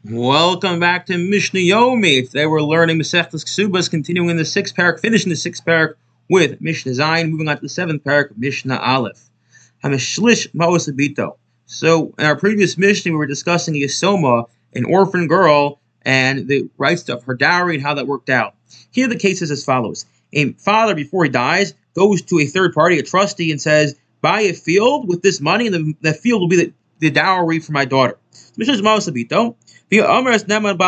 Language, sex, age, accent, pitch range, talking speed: English, male, 30-49, American, 145-200 Hz, 185 wpm